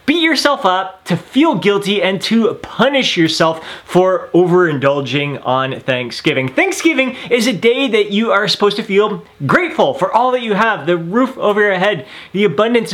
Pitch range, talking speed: 155-225 Hz, 170 wpm